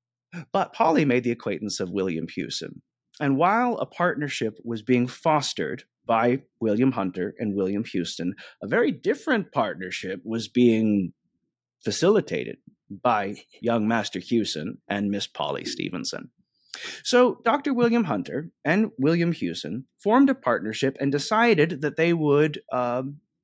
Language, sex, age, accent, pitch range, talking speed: English, male, 30-49, American, 115-165 Hz, 135 wpm